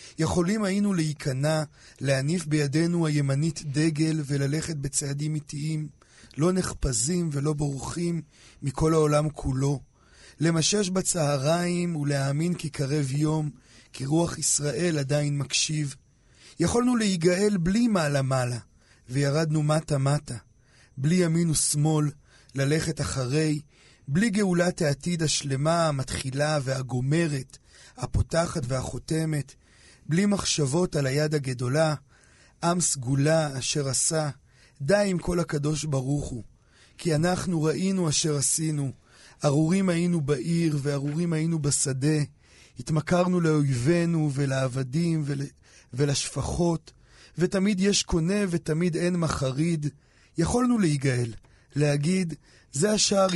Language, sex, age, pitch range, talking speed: Hebrew, male, 40-59, 140-165 Hz, 100 wpm